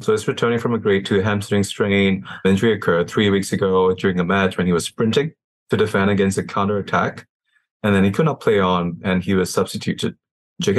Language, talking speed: English, 215 wpm